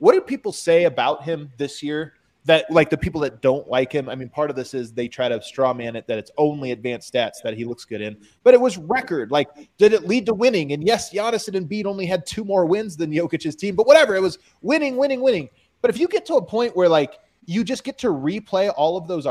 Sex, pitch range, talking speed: male, 145-205 Hz, 265 wpm